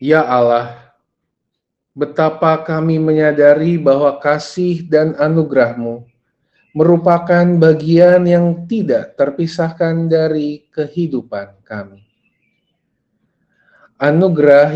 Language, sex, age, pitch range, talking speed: Indonesian, male, 30-49, 130-160 Hz, 75 wpm